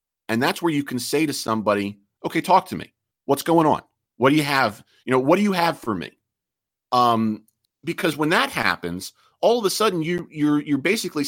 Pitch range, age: 110-150 Hz, 40-59